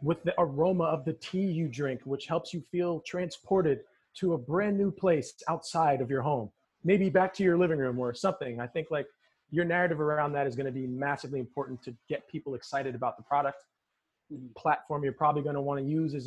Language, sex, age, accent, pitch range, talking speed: English, male, 30-49, American, 140-170 Hz, 220 wpm